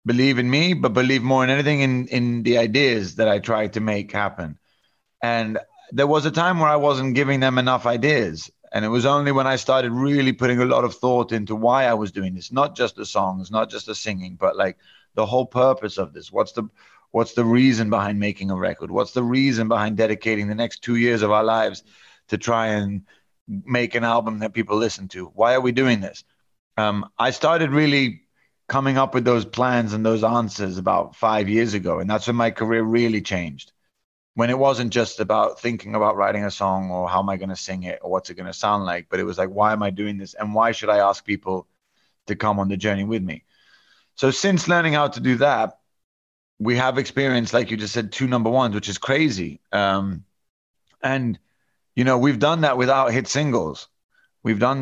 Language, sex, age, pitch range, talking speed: English, male, 30-49, 105-130 Hz, 220 wpm